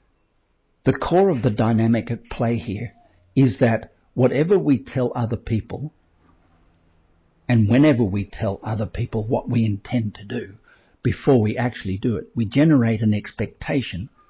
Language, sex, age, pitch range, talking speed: English, male, 60-79, 105-130 Hz, 145 wpm